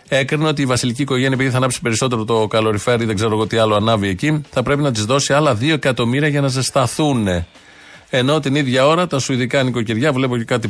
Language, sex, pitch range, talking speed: Greek, male, 115-145 Hz, 225 wpm